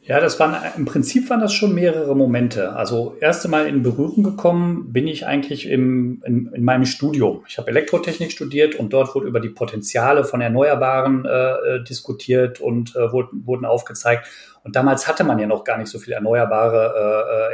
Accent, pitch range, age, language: German, 125-160 Hz, 40-59, German